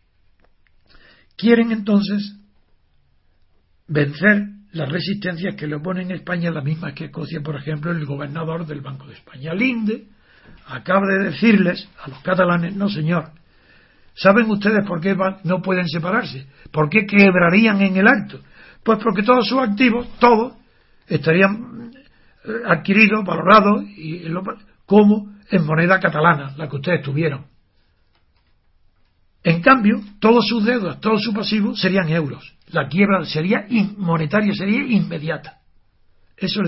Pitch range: 155-210 Hz